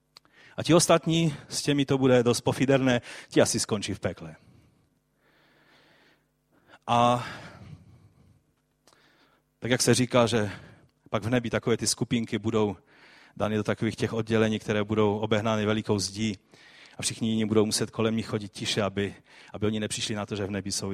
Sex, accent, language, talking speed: male, native, Czech, 160 wpm